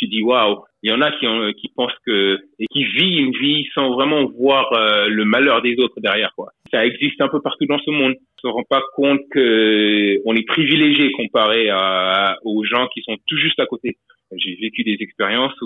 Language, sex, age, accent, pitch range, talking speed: French, male, 30-49, French, 110-145 Hz, 235 wpm